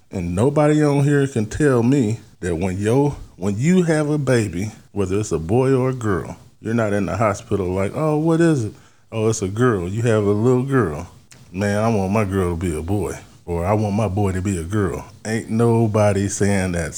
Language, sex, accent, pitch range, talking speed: English, male, American, 95-120 Hz, 220 wpm